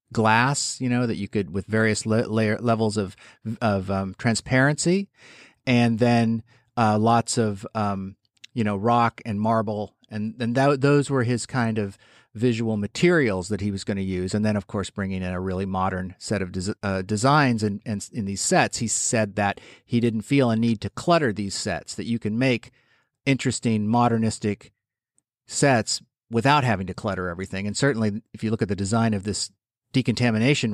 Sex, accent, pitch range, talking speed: male, American, 105-130 Hz, 185 wpm